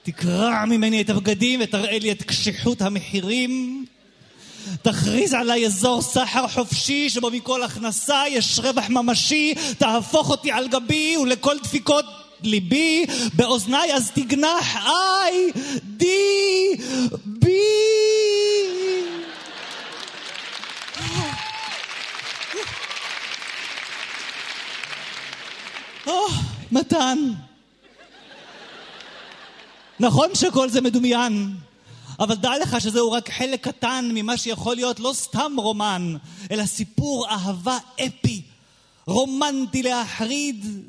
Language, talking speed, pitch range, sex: Hebrew, 85 wpm, 200-270 Hz, male